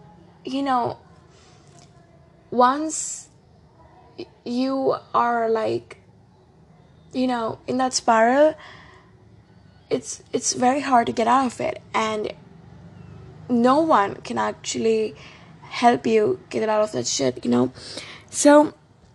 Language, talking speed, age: English, 115 wpm, 20-39